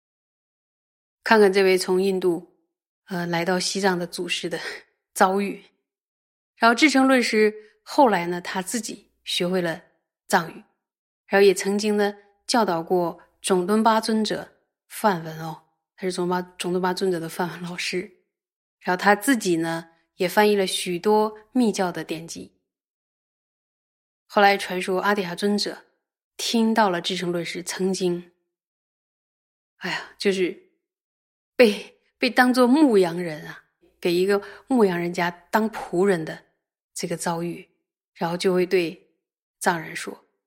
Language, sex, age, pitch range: Chinese, female, 20-39, 175-215 Hz